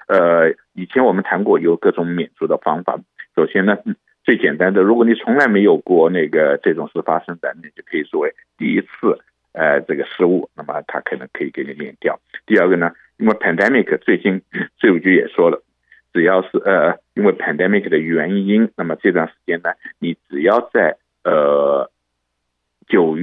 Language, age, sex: Chinese, 50-69, male